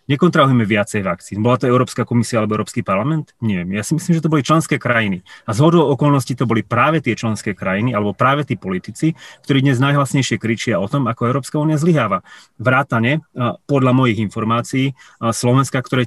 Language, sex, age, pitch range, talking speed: Slovak, male, 30-49, 115-145 Hz, 180 wpm